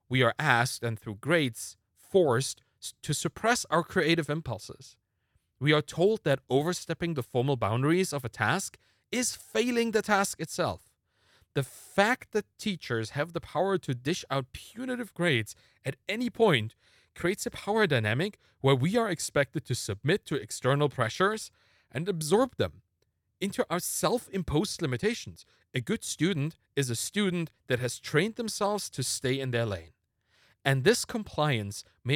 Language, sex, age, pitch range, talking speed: English, male, 40-59, 120-185 Hz, 155 wpm